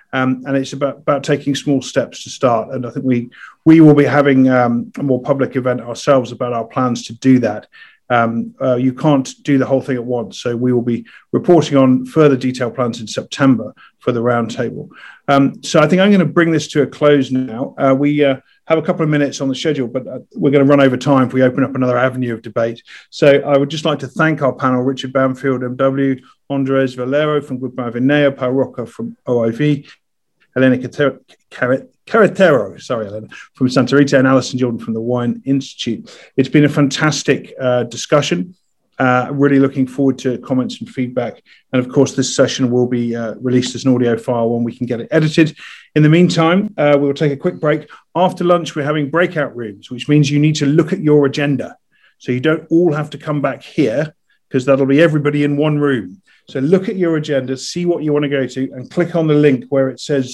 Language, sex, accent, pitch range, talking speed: English, male, British, 125-150 Hz, 220 wpm